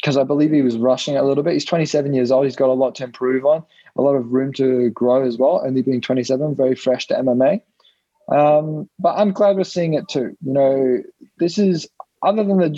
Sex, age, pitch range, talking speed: male, 20-39, 120-150 Hz, 245 wpm